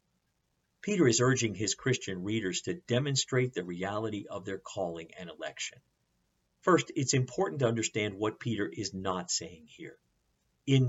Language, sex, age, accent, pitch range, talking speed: English, male, 50-69, American, 95-125 Hz, 150 wpm